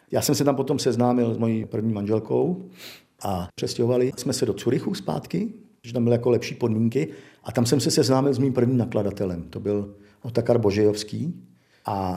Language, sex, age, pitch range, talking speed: Czech, male, 50-69, 105-135 Hz, 180 wpm